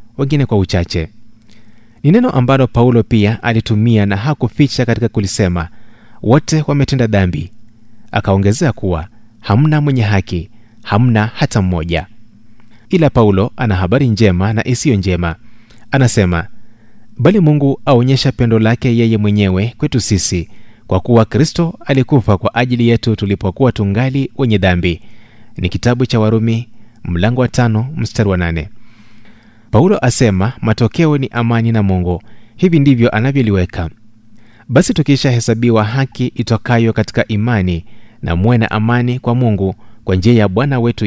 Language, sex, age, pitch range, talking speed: Swahili, male, 30-49, 105-125 Hz, 130 wpm